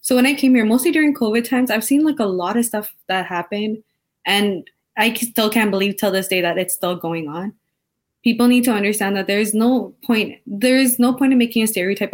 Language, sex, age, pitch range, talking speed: English, female, 20-39, 195-235 Hz, 235 wpm